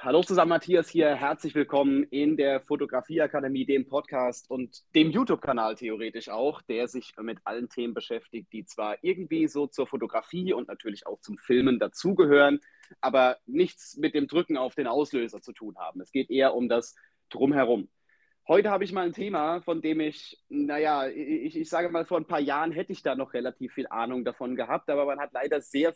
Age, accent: 30-49, German